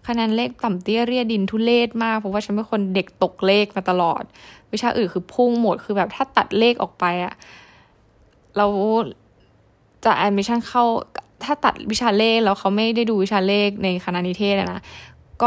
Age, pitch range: 10-29, 185-225 Hz